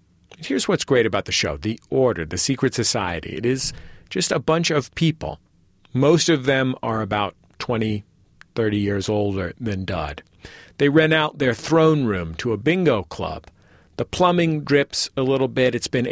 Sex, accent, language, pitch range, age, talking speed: male, American, English, 100-145 Hz, 40-59, 175 wpm